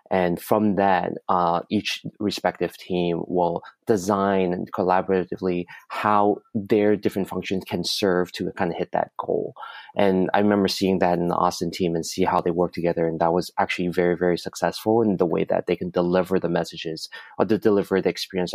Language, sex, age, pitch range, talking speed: English, male, 20-39, 85-100 Hz, 185 wpm